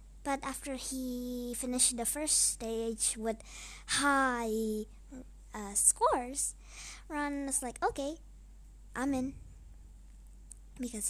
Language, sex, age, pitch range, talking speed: Indonesian, male, 20-39, 225-280 Hz, 95 wpm